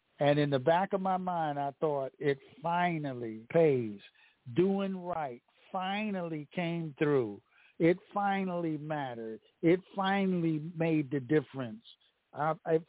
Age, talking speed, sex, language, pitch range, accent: 60-79, 120 wpm, male, English, 145-185 Hz, American